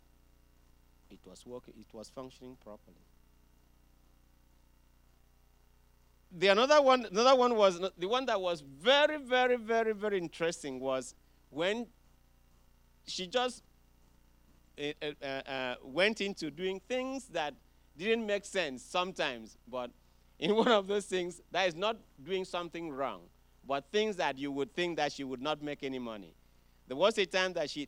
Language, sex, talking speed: English, male, 150 wpm